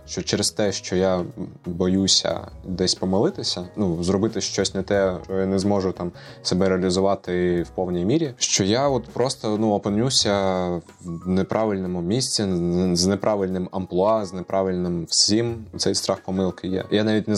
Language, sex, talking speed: Ukrainian, male, 155 wpm